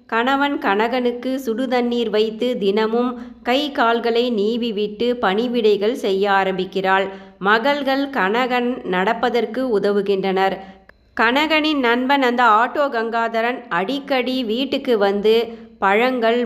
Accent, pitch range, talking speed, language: native, 200-255 Hz, 90 wpm, Tamil